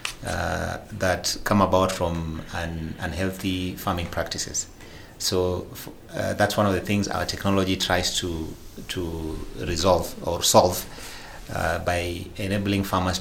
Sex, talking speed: male, 130 wpm